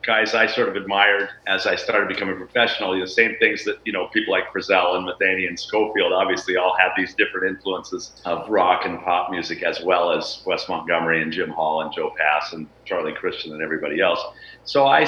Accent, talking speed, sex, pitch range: American, 220 wpm, male, 100-125 Hz